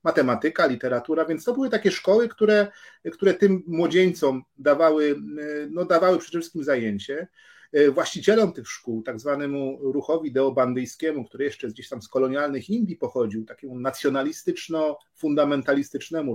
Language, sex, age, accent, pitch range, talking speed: Polish, male, 40-59, native, 130-180 Hz, 120 wpm